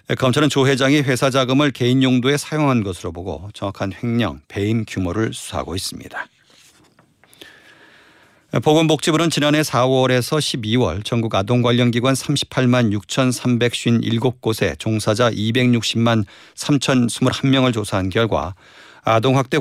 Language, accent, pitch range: Korean, native, 105-130 Hz